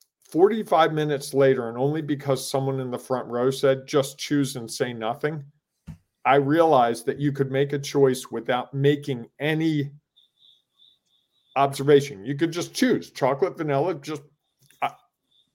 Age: 40-59